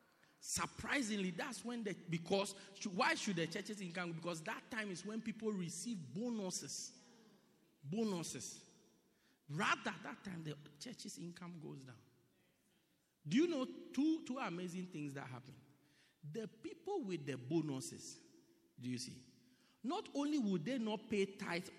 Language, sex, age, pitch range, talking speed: English, male, 50-69, 160-230 Hz, 145 wpm